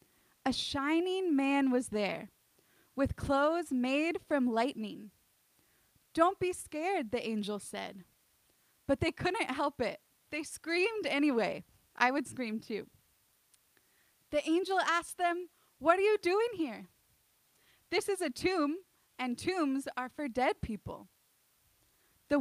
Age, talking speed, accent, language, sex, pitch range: 20-39, 130 wpm, American, English, female, 260-345 Hz